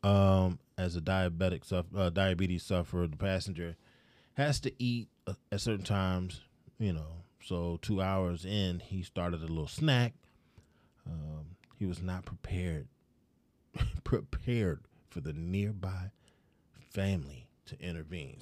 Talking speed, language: 125 wpm, English